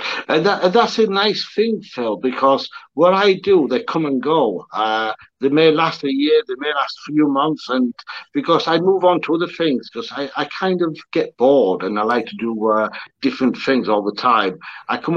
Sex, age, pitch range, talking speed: male, 60-79, 125-155 Hz, 220 wpm